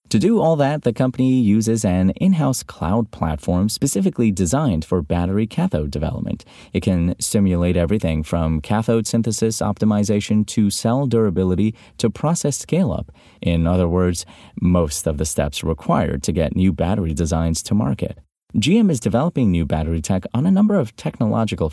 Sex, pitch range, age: male, 85-110 Hz, 30-49